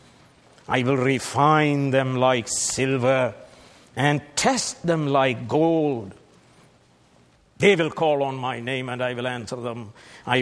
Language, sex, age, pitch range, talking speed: English, male, 60-79, 120-145 Hz, 130 wpm